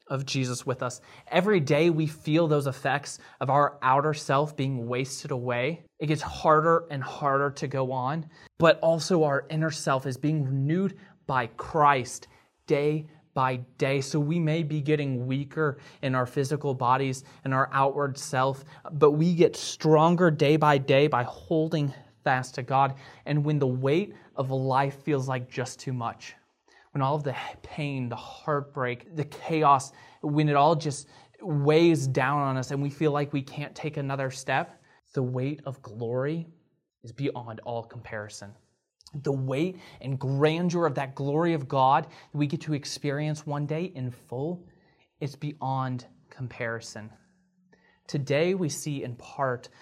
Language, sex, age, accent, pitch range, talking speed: English, male, 20-39, American, 130-155 Hz, 165 wpm